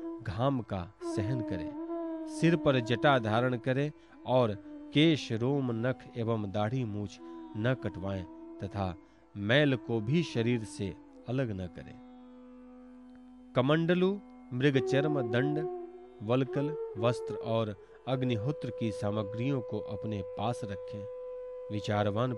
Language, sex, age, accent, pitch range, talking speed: Hindi, male, 40-59, native, 110-160 Hz, 105 wpm